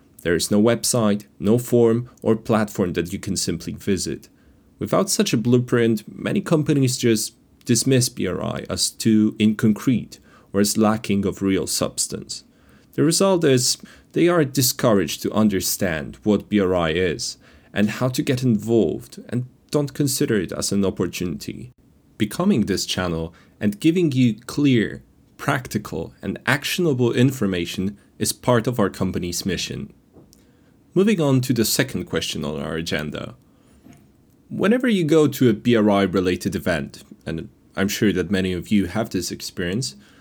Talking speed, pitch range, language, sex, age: 145 wpm, 100-125 Hz, English, male, 30-49